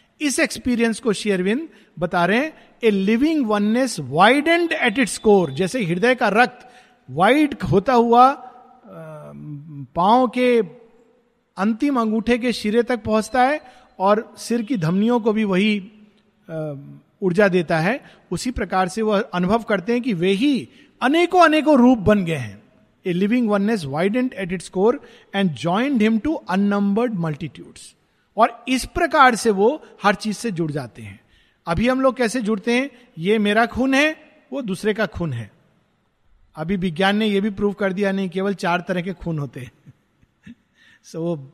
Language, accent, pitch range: Hindi, native, 190-250 Hz